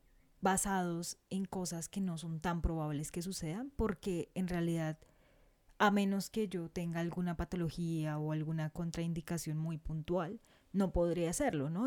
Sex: female